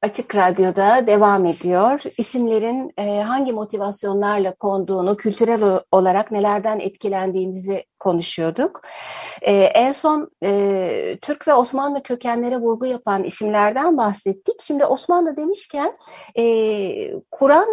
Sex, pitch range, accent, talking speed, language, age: female, 195-250 Hz, native, 90 wpm, Turkish, 60-79